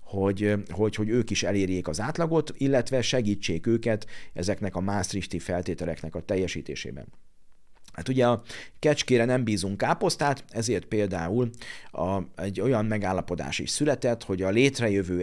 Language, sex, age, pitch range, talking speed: Hungarian, male, 50-69, 90-120 Hz, 140 wpm